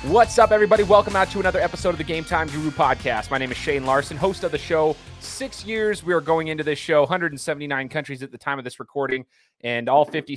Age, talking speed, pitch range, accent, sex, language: 30-49, 245 wpm, 130-160 Hz, American, male, English